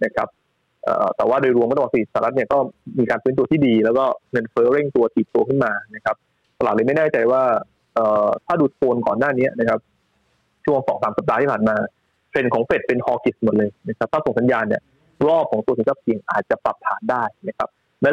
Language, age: Thai, 20-39